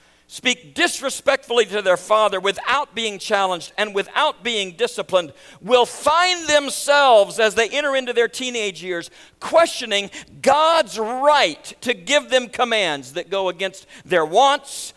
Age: 50-69